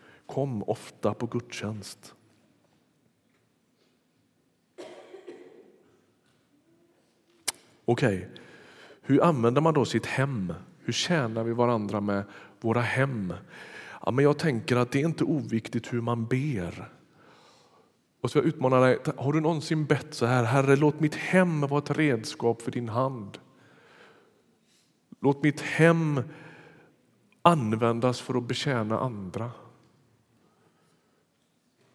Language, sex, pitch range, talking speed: Swedish, male, 115-145 Hz, 115 wpm